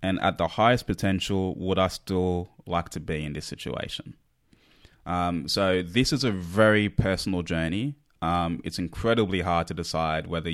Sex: male